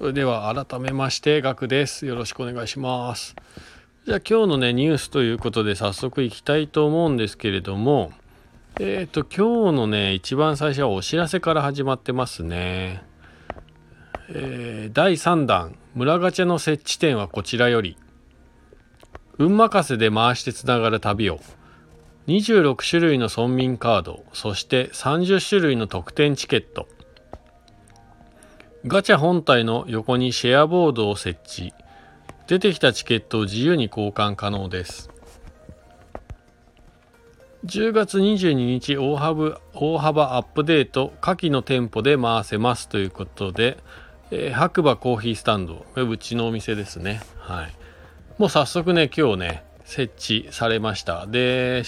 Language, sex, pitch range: Japanese, male, 95-150 Hz